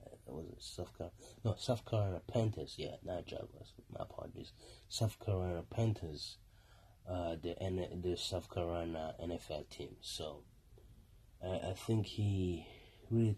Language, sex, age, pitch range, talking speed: English, male, 30-49, 90-115 Hz, 135 wpm